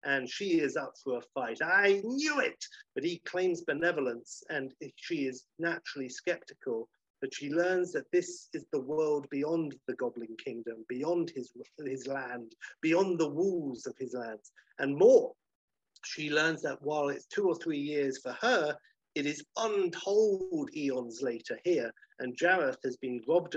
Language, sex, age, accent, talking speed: English, male, 50-69, British, 165 wpm